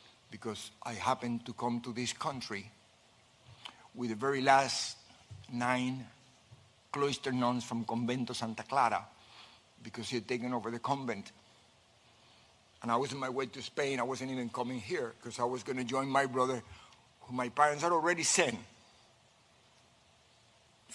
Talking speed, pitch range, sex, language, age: 155 wpm, 115-145 Hz, male, English, 60-79